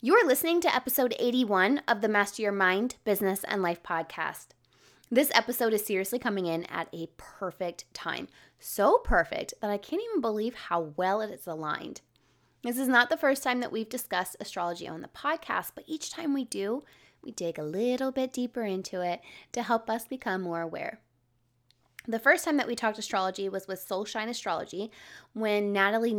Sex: female